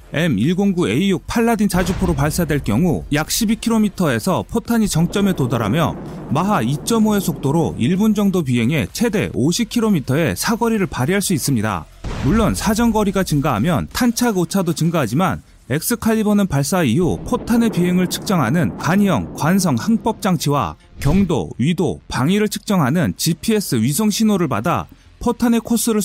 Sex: male